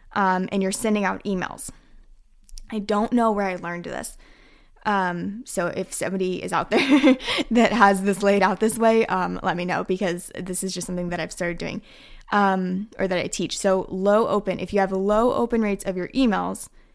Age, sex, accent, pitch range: 10-29, female, American, 185-215 Hz